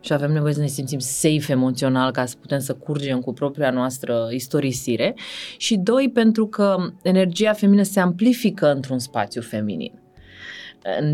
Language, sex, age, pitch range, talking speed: Romanian, female, 30-49, 145-185 Hz, 150 wpm